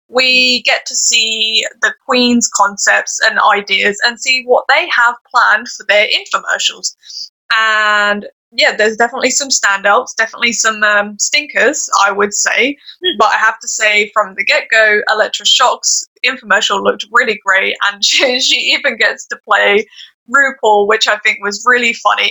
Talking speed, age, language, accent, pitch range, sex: 160 wpm, 10-29, English, British, 205-275 Hz, female